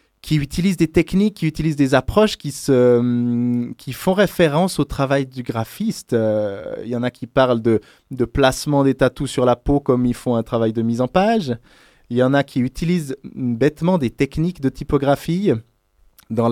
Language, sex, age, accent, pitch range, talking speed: French, male, 20-39, French, 120-150 Hz, 195 wpm